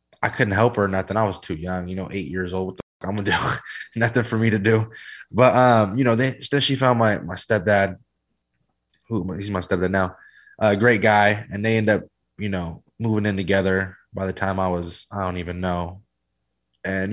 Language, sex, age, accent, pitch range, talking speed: English, male, 20-39, American, 95-115 Hz, 225 wpm